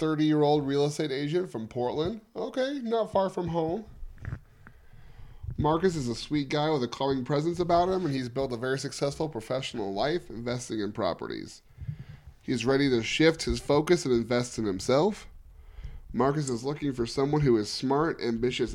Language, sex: English, male